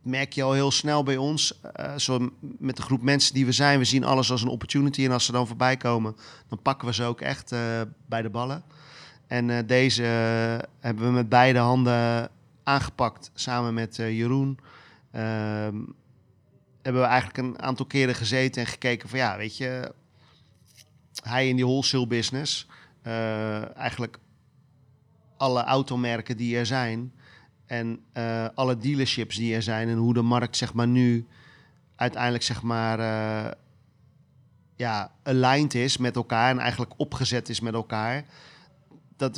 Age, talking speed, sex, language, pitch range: 40-59, 155 wpm, male, Dutch, 120-135 Hz